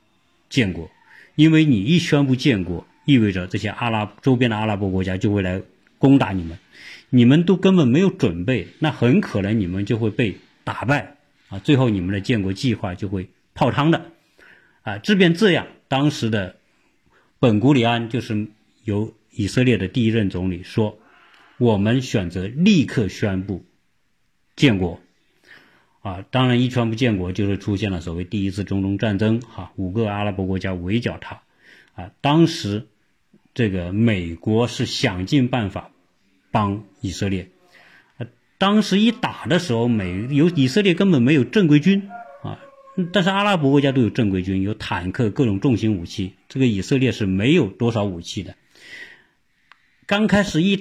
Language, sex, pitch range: Chinese, male, 100-135 Hz